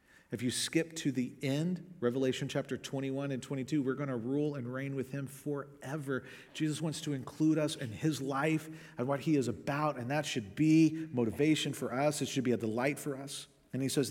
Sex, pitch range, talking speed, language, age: male, 135-165 Hz, 215 wpm, English, 40-59